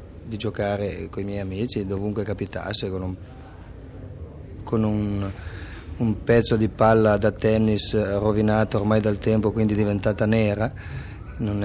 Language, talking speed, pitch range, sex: Italian, 130 wpm, 95-110 Hz, male